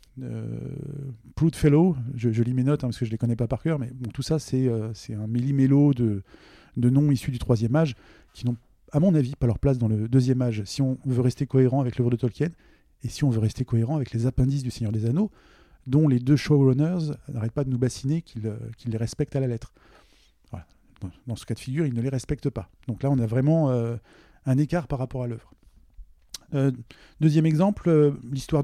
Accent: French